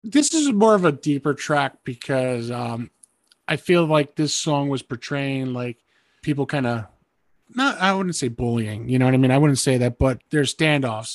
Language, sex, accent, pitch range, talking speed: English, male, American, 125-145 Hz, 200 wpm